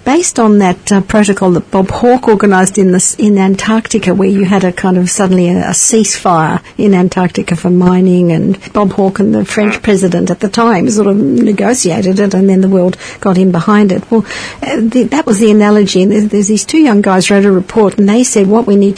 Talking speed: 230 wpm